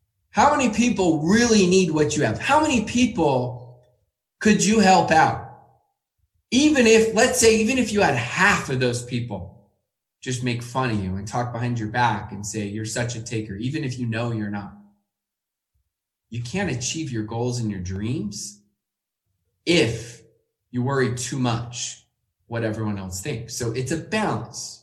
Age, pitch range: 20-39, 105-150 Hz